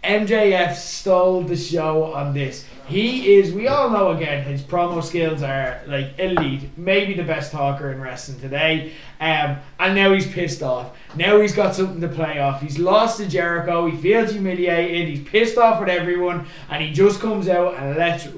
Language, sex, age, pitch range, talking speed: English, male, 20-39, 155-190 Hz, 185 wpm